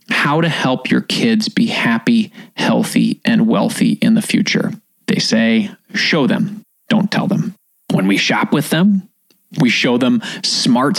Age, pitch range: 30-49, 180-230 Hz